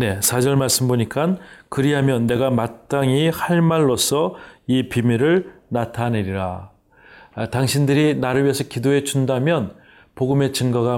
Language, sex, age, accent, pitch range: Korean, male, 40-59, native, 115-135 Hz